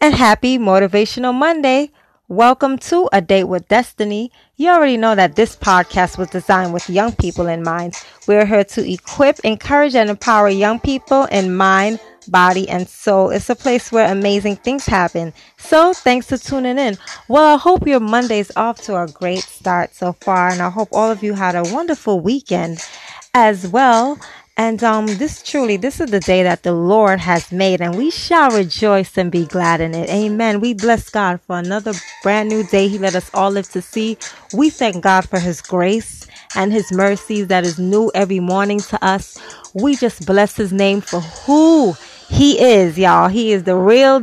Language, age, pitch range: English, 20-39, 185-235 Hz